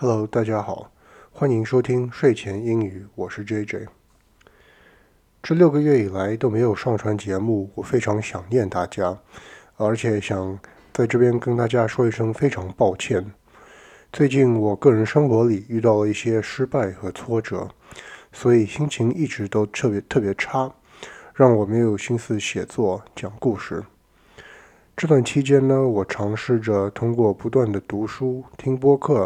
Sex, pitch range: male, 105-130 Hz